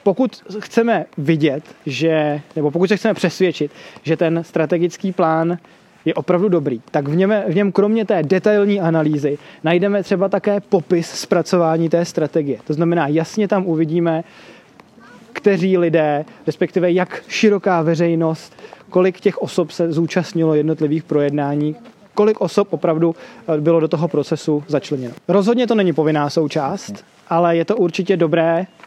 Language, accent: Czech, native